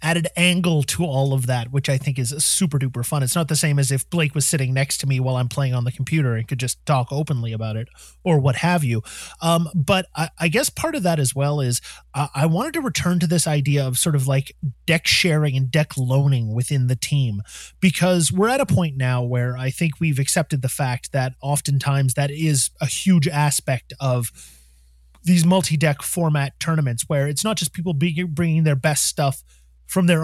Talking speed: 215 wpm